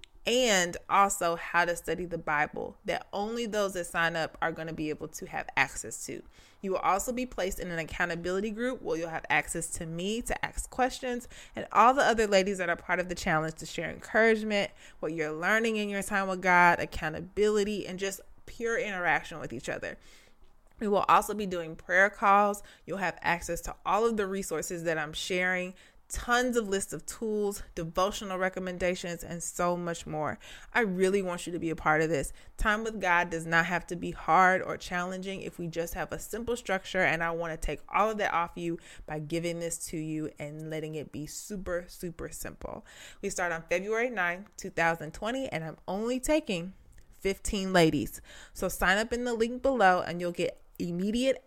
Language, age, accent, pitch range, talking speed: English, 20-39, American, 165-205 Hz, 200 wpm